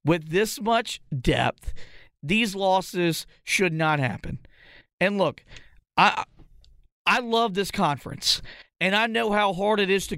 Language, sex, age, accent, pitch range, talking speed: English, male, 40-59, American, 145-180 Hz, 140 wpm